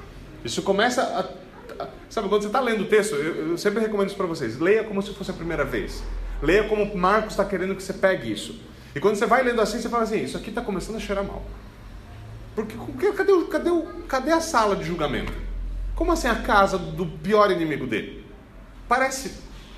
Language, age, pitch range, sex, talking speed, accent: Portuguese, 30-49, 155-215 Hz, male, 205 wpm, Brazilian